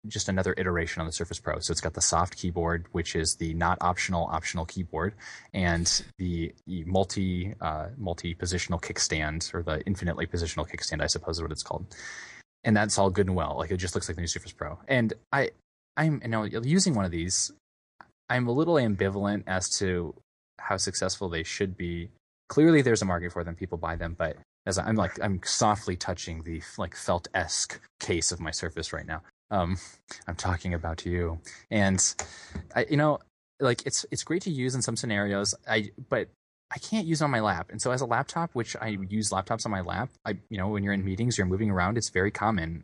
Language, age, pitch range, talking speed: English, 20-39, 85-105 Hz, 210 wpm